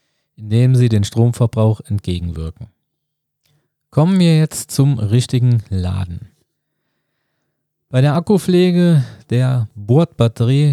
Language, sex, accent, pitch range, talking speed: German, male, German, 110-145 Hz, 90 wpm